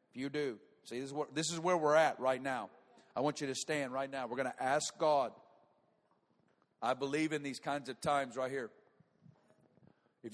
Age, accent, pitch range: 50-69, American, 150-185 Hz